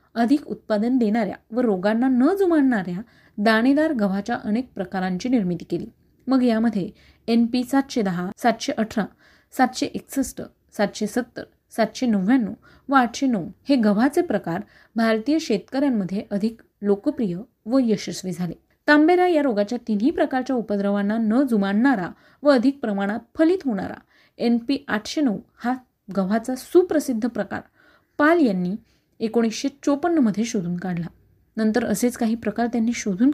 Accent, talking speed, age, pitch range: native, 115 wpm, 30-49, 205-275 Hz